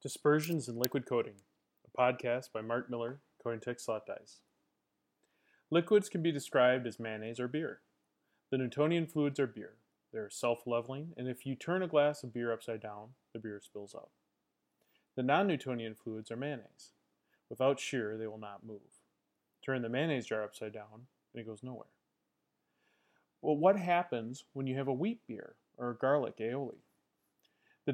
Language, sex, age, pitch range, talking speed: English, male, 30-49, 115-145 Hz, 165 wpm